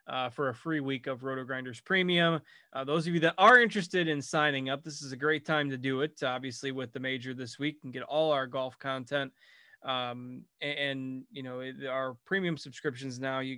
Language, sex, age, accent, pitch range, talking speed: English, male, 20-39, American, 130-150 Hz, 210 wpm